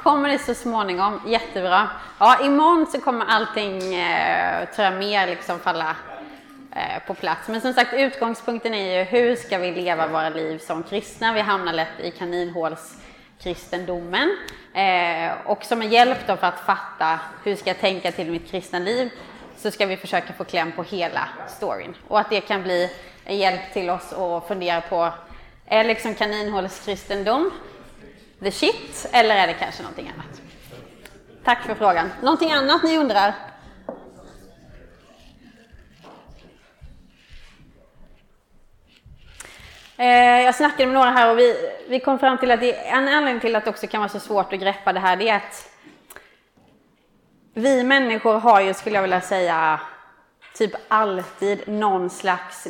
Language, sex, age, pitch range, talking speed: Swedish, female, 20-39, 180-240 Hz, 150 wpm